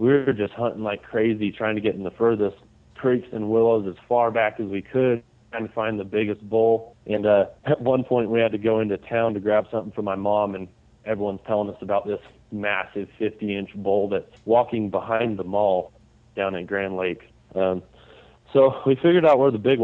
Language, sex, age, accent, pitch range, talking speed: English, male, 30-49, American, 105-120 Hz, 210 wpm